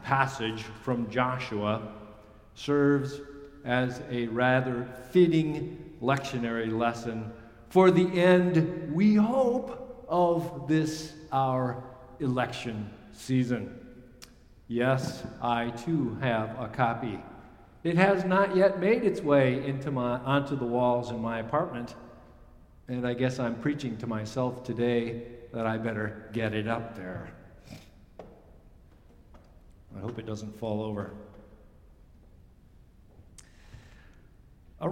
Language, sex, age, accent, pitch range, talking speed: English, male, 50-69, American, 115-165 Hz, 110 wpm